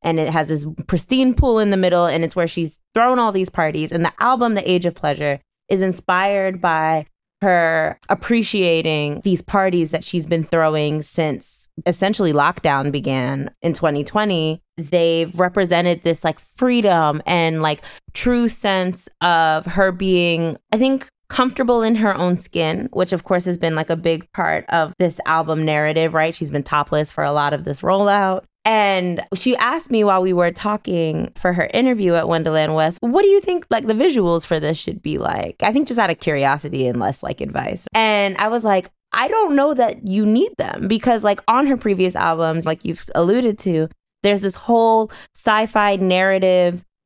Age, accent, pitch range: 20-39, American, 160-205 Hz